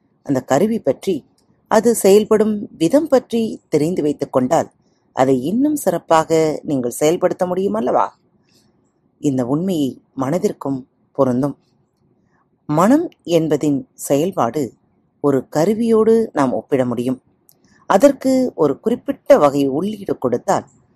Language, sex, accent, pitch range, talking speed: Tamil, female, native, 135-230 Hz, 95 wpm